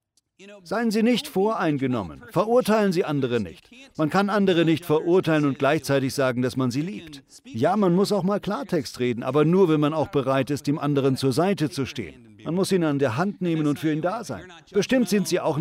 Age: 40-59